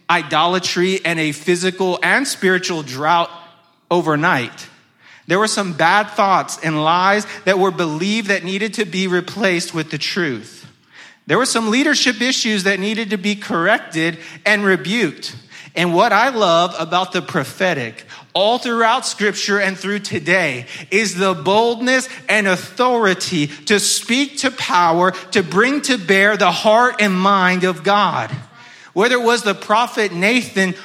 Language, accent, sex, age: English, American, male, 30-49